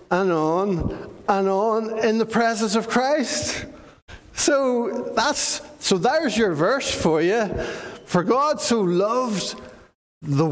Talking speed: 125 wpm